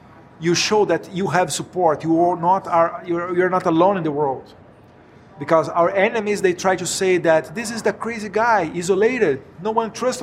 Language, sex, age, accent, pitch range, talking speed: English, male, 50-69, Brazilian, 150-175 Hz, 180 wpm